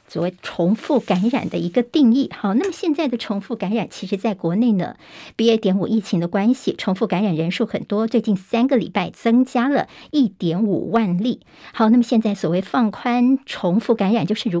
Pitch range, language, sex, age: 190-240 Hz, Chinese, male, 50-69